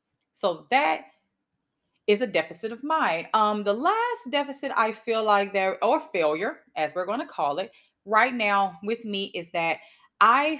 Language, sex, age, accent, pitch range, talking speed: English, female, 30-49, American, 195-325 Hz, 170 wpm